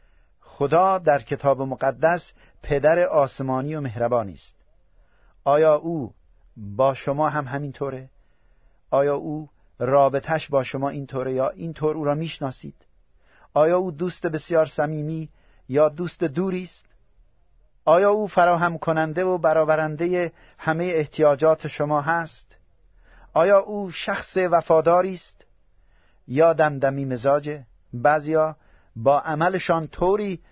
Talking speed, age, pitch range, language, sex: 110 wpm, 50-69, 135-165 Hz, Persian, male